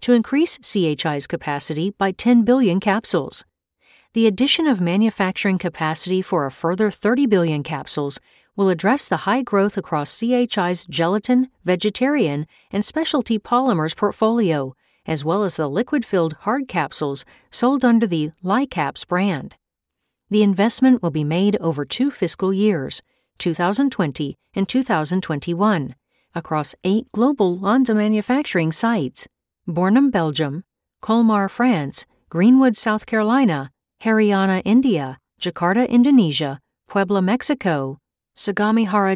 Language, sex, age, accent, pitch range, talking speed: English, female, 40-59, American, 165-230 Hz, 115 wpm